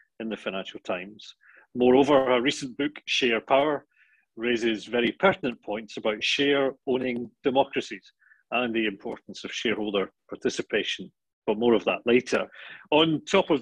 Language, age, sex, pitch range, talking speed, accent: English, 40-59, male, 125-170 Hz, 135 wpm, British